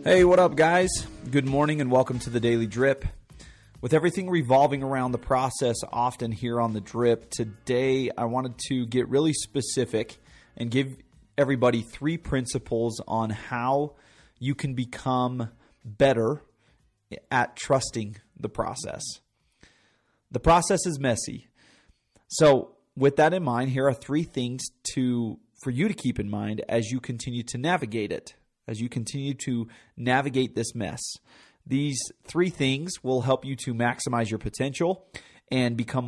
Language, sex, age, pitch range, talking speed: English, male, 30-49, 115-140 Hz, 150 wpm